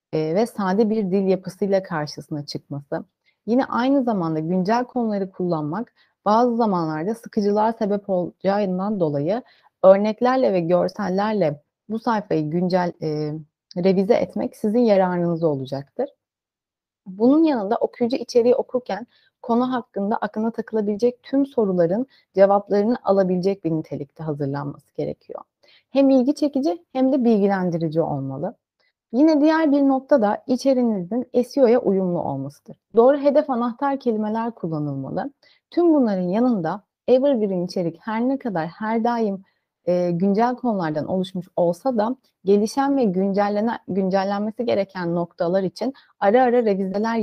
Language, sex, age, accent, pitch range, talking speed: Turkish, female, 30-49, native, 180-240 Hz, 120 wpm